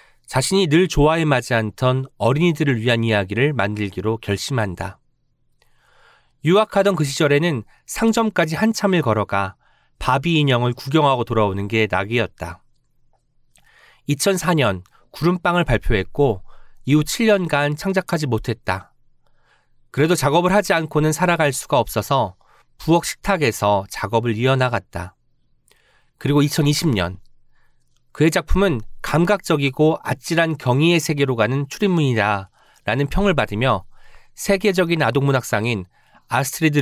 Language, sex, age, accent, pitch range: Korean, male, 40-59, native, 115-165 Hz